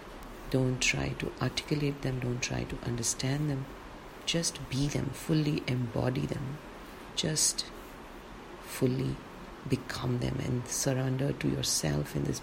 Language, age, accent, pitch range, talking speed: English, 40-59, Indian, 115-135 Hz, 125 wpm